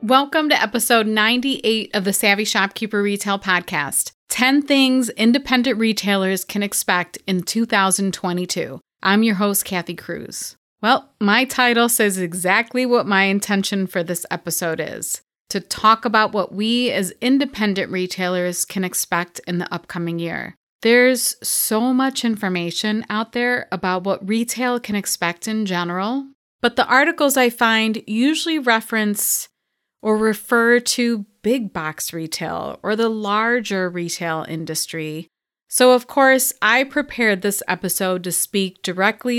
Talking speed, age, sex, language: 135 wpm, 30-49, female, English